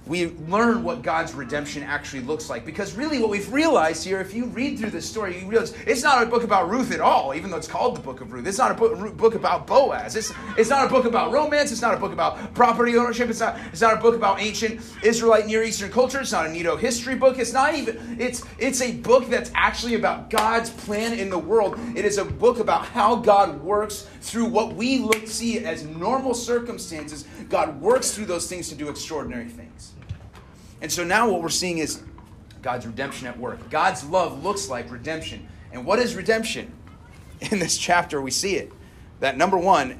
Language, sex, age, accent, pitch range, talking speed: English, male, 30-49, American, 160-235 Hz, 220 wpm